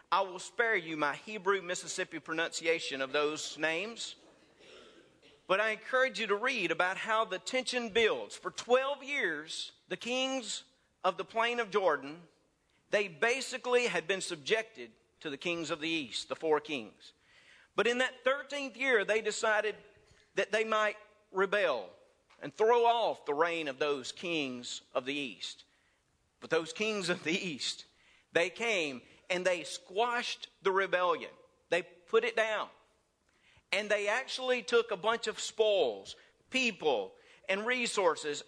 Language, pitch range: English, 175-240 Hz